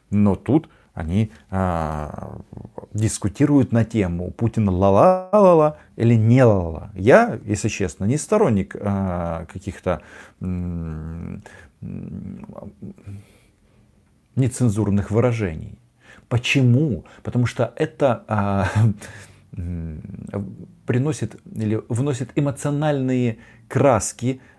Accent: native